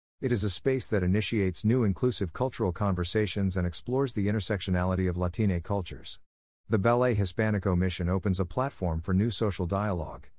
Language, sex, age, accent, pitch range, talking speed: English, male, 50-69, American, 90-115 Hz, 160 wpm